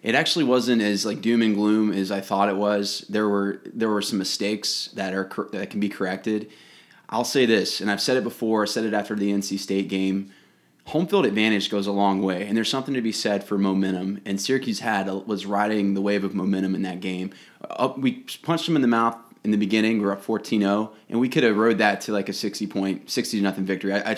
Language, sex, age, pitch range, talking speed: English, male, 20-39, 100-110 Hz, 250 wpm